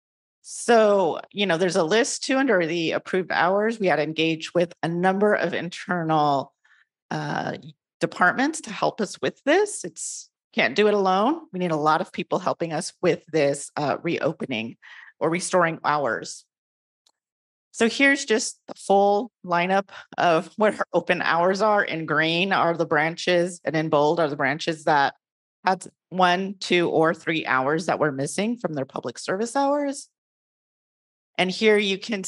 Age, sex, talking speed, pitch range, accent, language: 40-59, female, 165 wpm, 150-205 Hz, American, English